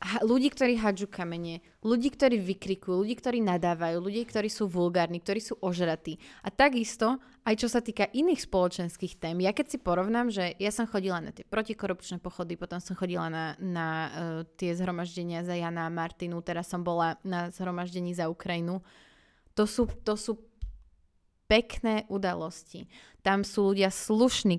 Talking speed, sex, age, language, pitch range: 160 wpm, female, 20-39, Slovak, 180-215 Hz